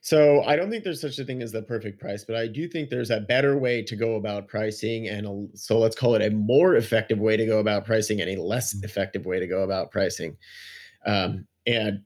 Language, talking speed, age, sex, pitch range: English, 240 wpm, 30-49, male, 105-120 Hz